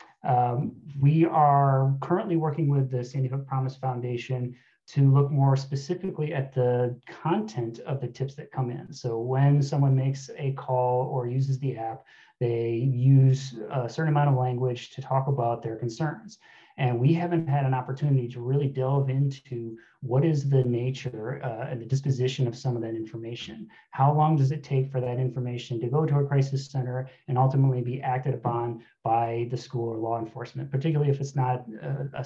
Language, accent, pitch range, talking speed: English, American, 125-140 Hz, 185 wpm